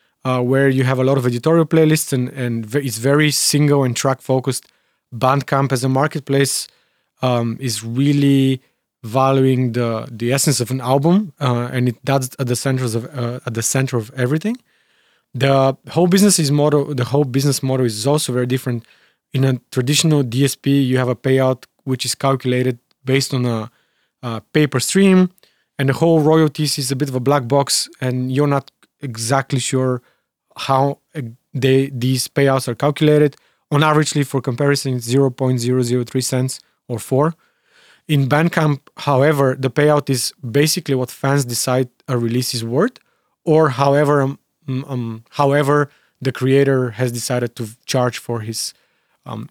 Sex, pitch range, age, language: male, 125-145 Hz, 30-49, English